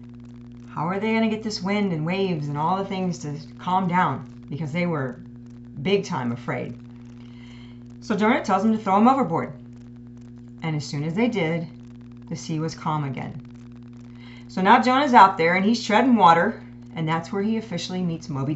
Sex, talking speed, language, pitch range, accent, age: female, 190 wpm, English, 120-185 Hz, American, 40-59